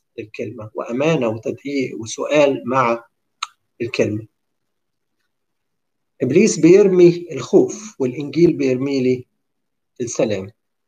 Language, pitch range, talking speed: Arabic, 125-175 Hz, 70 wpm